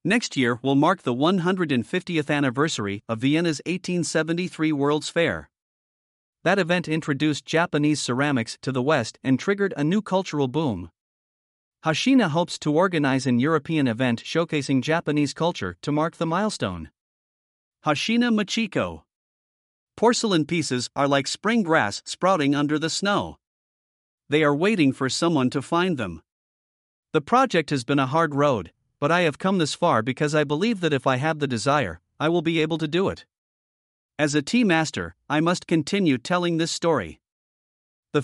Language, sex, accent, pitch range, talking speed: English, male, American, 135-170 Hz, 155 wpm